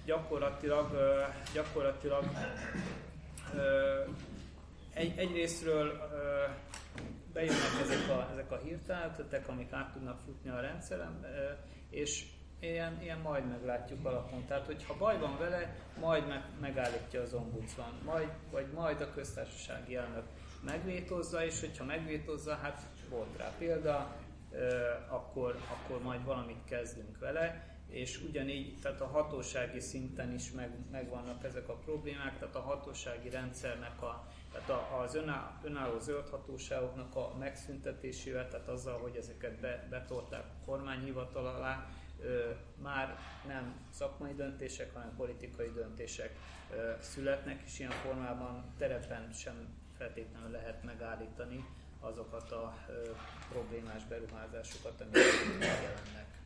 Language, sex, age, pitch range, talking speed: Hungarian, male, 30-49, 125-155 Hz, 105 wpm